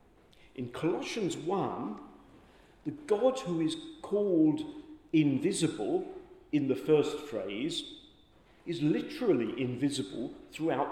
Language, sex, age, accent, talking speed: English, male, 50-69, British, 95 wpm